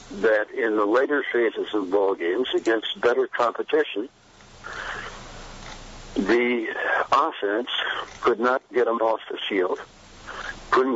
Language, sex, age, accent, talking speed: English, male, 60-79, American, 115 wpm